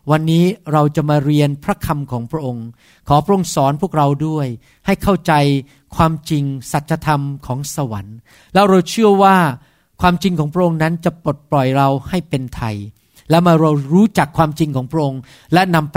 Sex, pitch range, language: male, 135-180 Hz, Thai